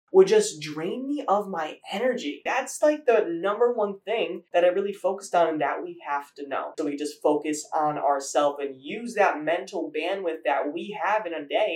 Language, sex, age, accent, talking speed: English, male, 20-39, American, 210 wpm